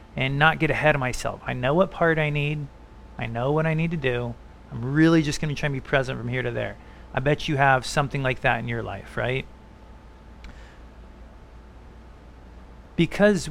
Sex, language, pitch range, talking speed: male, English, 125-160 Hz, 190 wpm